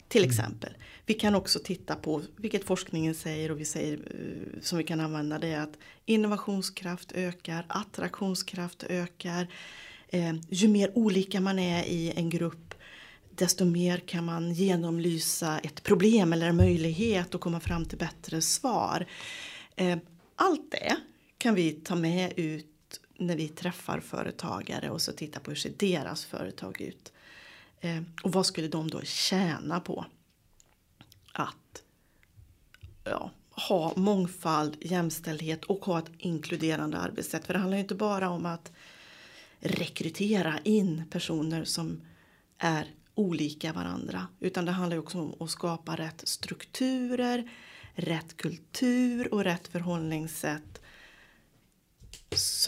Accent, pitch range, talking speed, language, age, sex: native, 160-190 Hz, 130 wpm, Swedish, 30-49, female